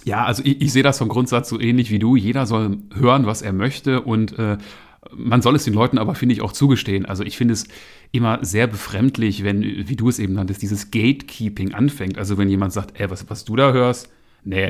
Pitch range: 100-125 Hz